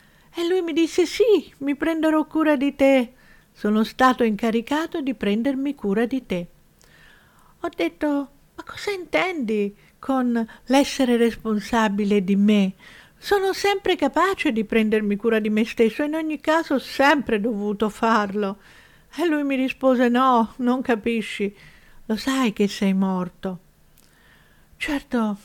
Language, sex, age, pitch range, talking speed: Italian, female, 50-69, 210-285 Hz, 135 wpm